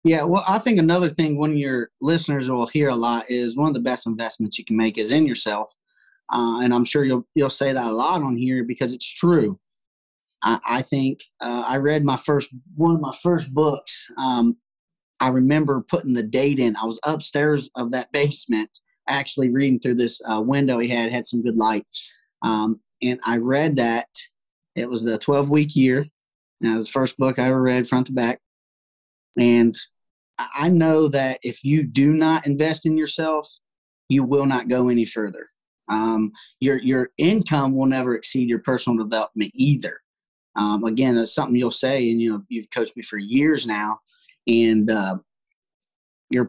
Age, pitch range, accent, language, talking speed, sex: 20-39, 115-145 Hz, American, English, 190 wpm, male